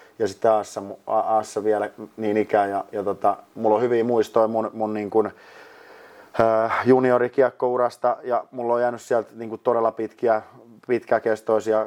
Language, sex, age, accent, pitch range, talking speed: Finnish, male, 30-49, native, 105-115 Hz, 140 wpm